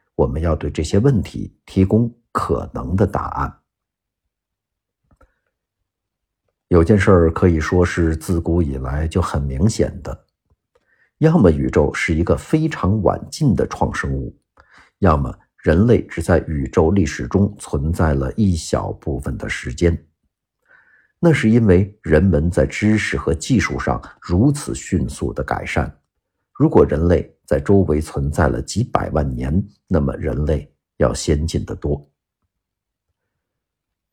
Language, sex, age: Chinese, male, 50-69